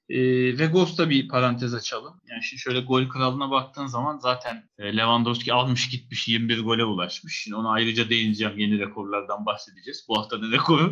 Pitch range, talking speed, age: 115-150 Hz, 175 wpm, 30-49